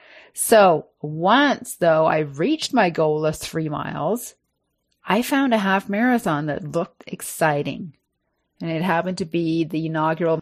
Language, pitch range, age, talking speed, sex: English, 160-205 Hz, 30-49, 145 wpm, female